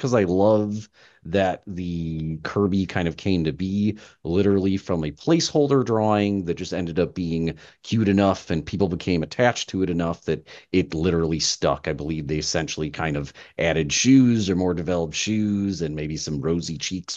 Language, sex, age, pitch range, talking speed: English, male, 30-49, 75-100 Hz, 180 wpm